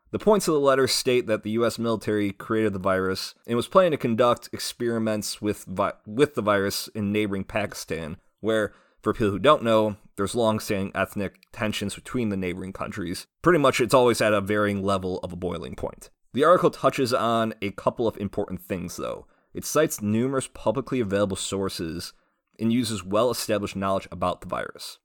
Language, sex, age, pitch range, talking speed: English, male, 30-49, 95-115 Hz, 180 wpm